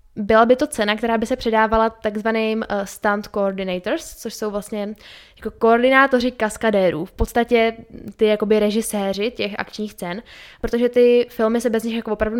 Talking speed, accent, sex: 160 wpm, native, female